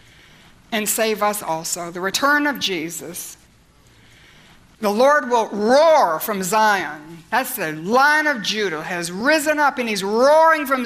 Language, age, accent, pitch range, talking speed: English, 60-79, American, 205-265 Hz, 145 wpm